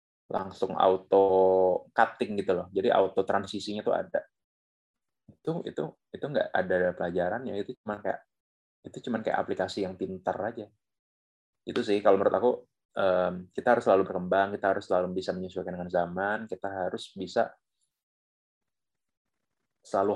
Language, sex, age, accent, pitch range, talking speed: Indonesian, male, 20-39, native, 90-100 Hz, 135 wpm